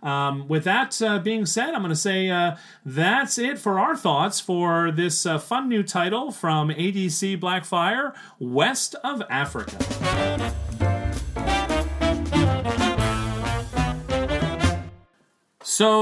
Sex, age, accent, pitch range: male, 40-59, American, 150-200 Hz